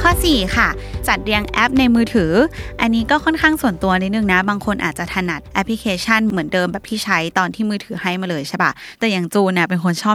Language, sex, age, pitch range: Thai, female, 20-39, 185-235 Hz